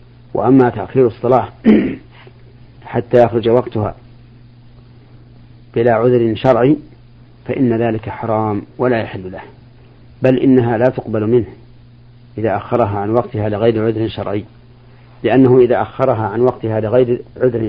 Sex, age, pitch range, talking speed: male, 40-59, 115-125 Hz, 115 wpm